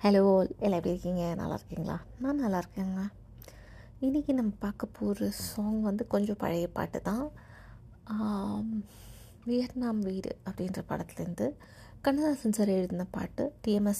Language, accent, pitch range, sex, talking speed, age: Tamil, native, 195-225 Hz, female, 110 wpm, 20-39